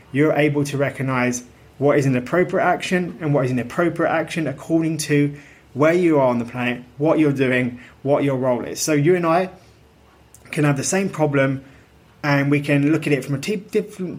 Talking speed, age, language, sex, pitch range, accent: 205 wpm, 20-39, English, male, 135-165 Hz, British